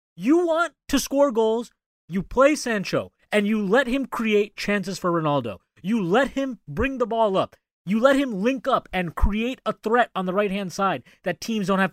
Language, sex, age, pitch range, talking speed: English, male, 30-49, 180-255 Hz, 200 wpm